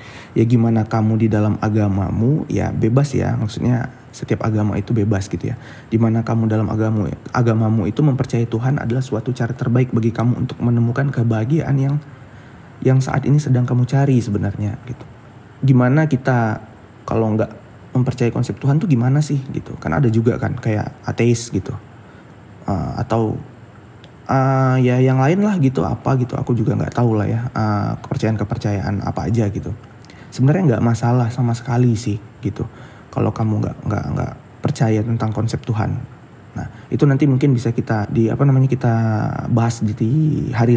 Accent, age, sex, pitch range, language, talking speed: native, 20-39, male, 110-130 Hz, Indonesian, 160 wpm